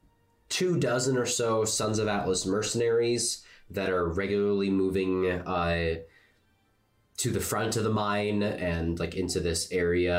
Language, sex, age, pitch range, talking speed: English, male, 20-39, 85-115 Hz, 140 wpm